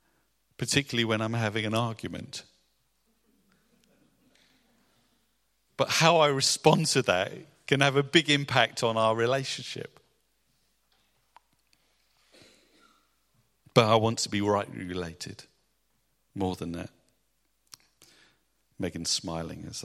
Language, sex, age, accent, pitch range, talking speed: English, male, 50-69, British, 110-135 Hz, 100 wpm